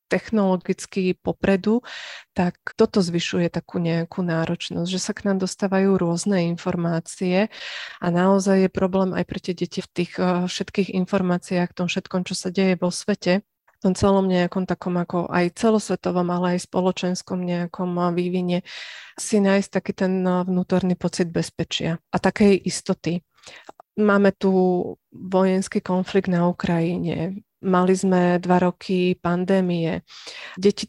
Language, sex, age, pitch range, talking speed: Slovak, female, 30-49, 175-200 Hz, 135 wpm